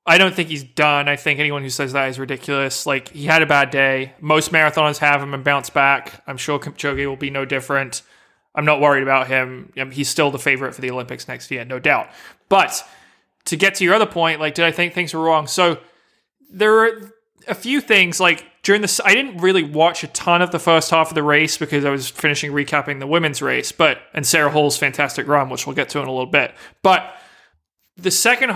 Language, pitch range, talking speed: English, 145-175 Hz, 230 wpm